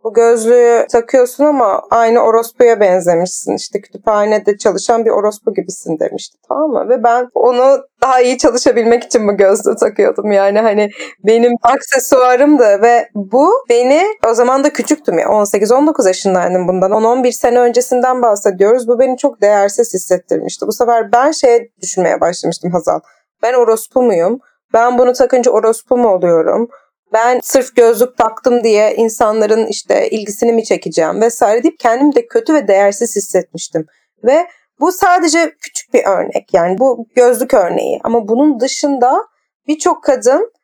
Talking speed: 145 wpm